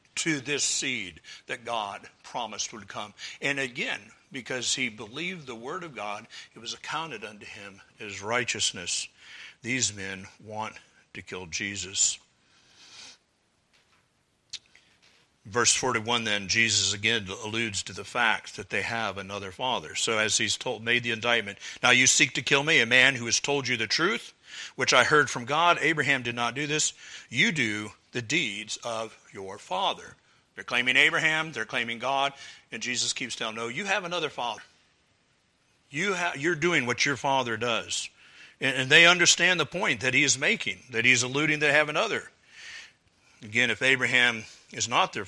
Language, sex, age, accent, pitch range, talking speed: English, male, 50-69, American, 105-140 Hz, 170 wpm